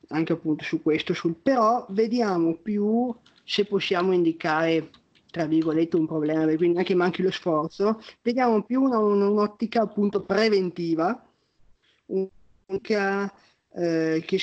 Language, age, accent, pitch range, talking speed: Italian, 20-39, native, 160-195 Hz, 125 wpm